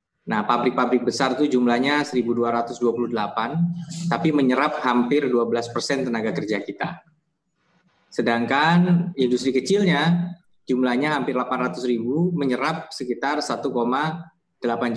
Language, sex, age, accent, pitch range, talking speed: Indonesian, male, 20-39, native, 120-160 Hz, 90 wpm